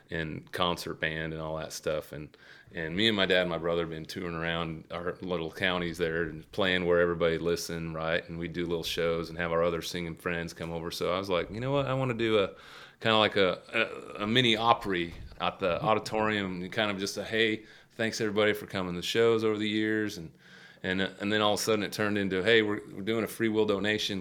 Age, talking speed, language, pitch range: 30-49, 250 wpm, English, 85-110 Hz